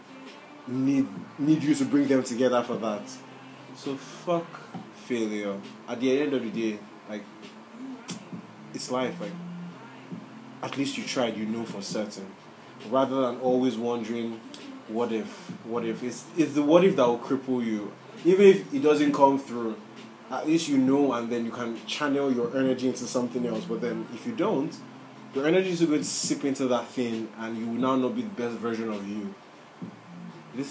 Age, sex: 20-39, male